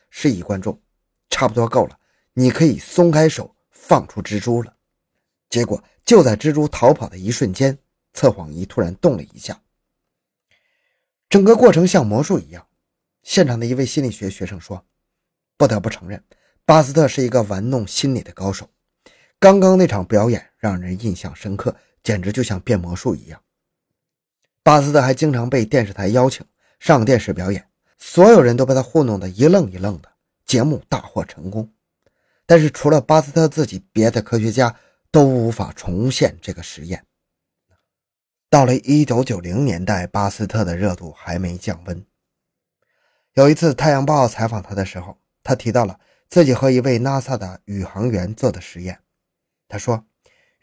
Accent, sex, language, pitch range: native, male, Chinese, 100-140 Hz